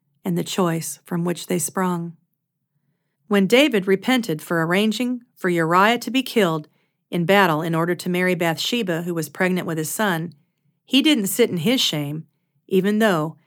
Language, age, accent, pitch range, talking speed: English, 40-59, American, 160-200 Hz, 170 wpm